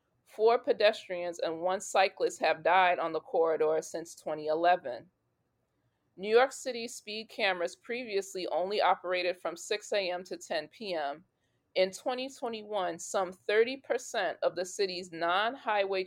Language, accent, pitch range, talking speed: English, American, 175-240 Hz, 125 wpm